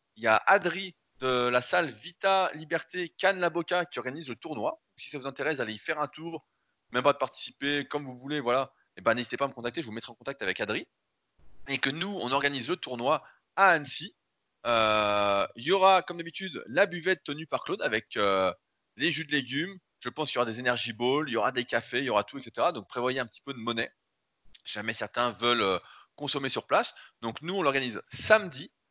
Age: 20-39